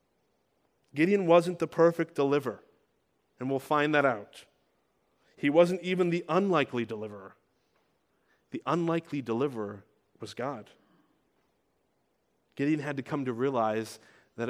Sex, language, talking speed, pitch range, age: male, English, 115 wpm, 130-165 Hz, 30-49